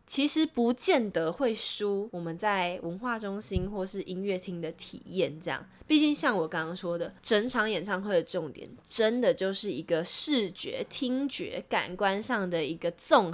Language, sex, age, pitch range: Chinese, female, 20-39, 175-250 Hz